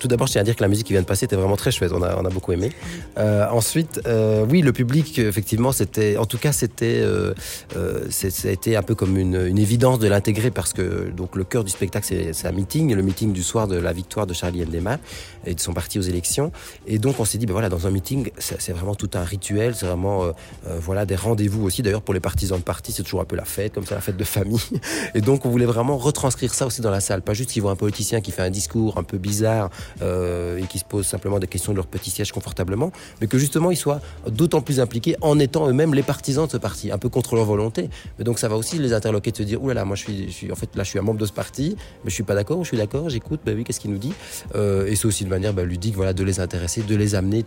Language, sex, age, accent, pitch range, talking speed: French, male, 30-49, French, 95-115 Hz, 295 wpm